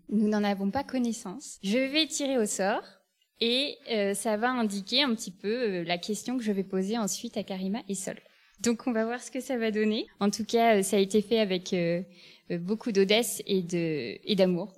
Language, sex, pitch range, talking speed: French, female, 195-240 Hz, 210 wpm